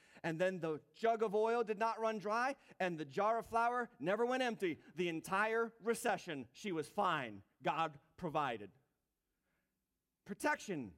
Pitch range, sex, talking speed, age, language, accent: 195-235 Hz, male, 150 wpm, 30-49, English, American